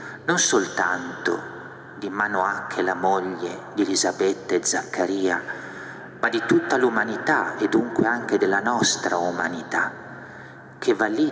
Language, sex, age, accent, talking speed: Italian, male, 40-59, native, 120 wpm